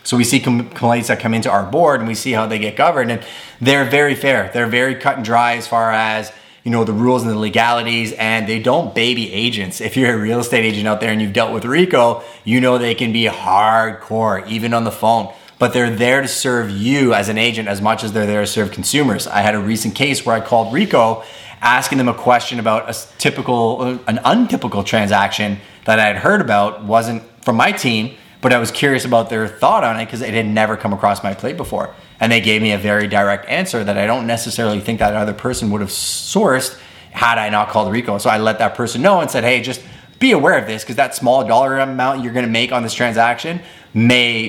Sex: male